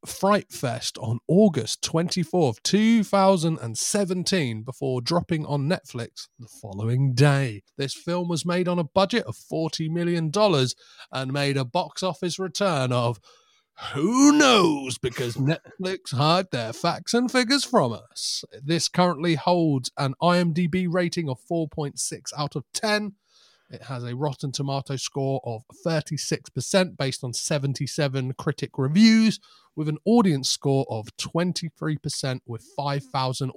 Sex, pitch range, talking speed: male, 130-175 Hz, 130 wpm